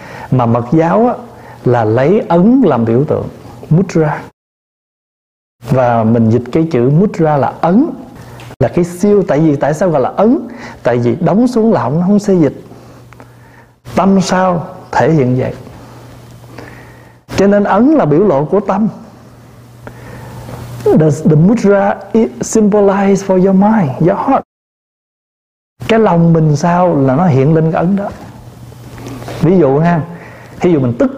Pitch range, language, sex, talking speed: 130-205 Hz, Vietnamese, male, 150 wpm